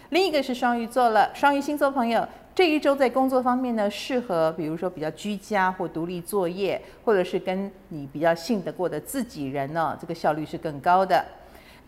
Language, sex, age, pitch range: Chinese, female, 50-69, 170-230 Hz